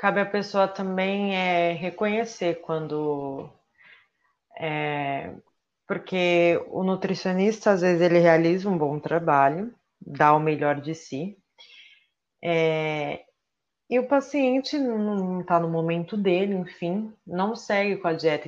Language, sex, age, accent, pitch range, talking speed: Portuguese, female, 20-39, Brazilian, 160-200 Hz, 125 wpm